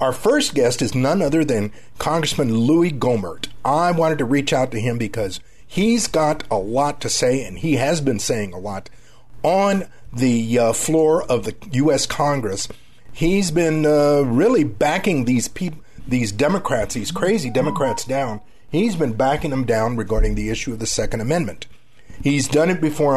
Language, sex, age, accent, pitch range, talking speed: English, male, 50-69, American, 115-155 Hz, 175 wpm